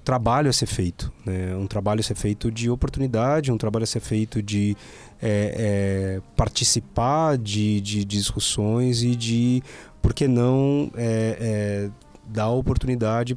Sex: male